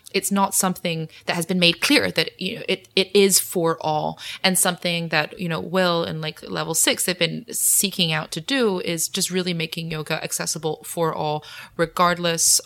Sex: female